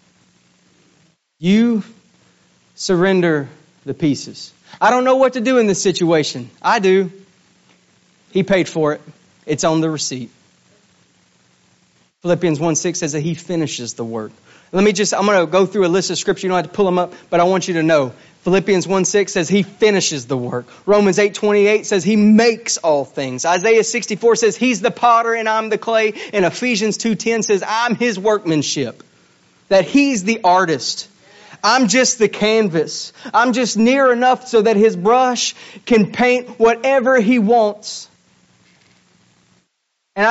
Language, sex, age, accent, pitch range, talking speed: English, male, 30-49, American, 155-220 Hz, 170 wpm